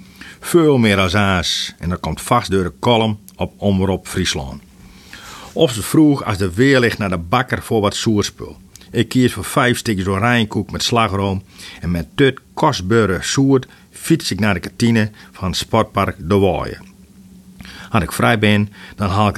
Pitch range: 95-115 Hz